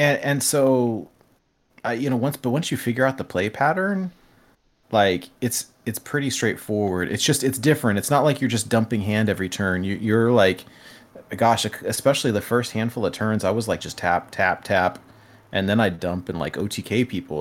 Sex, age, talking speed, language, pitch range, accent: male, 30-49, 200 wpm, English, 95-130 Hz, American